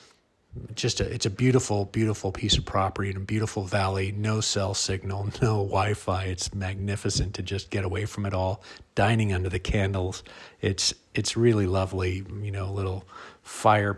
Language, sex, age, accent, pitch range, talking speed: English, male, 40-59, American, 95-110 Hz, 170 wpm